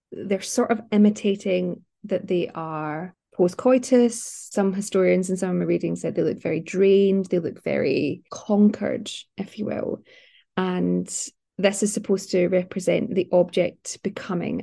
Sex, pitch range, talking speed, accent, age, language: female, 170-200 Hz, 150 wpm, British, 20-39, English